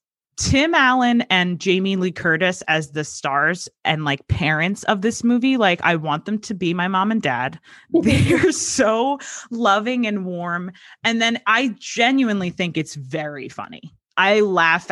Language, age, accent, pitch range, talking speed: English, 20-39, American, 155-200 Hz, 160 wpm